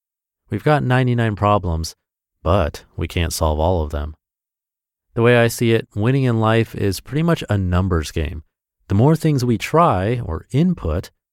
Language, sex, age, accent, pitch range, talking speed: English, male, 30-49, American, 85-120 Hz, 170 wpm